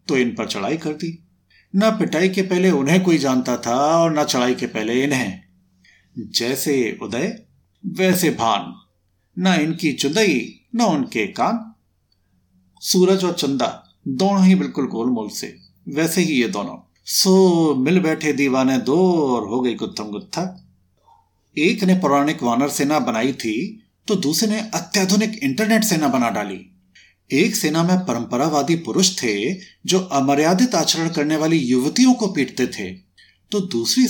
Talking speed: 150 wpm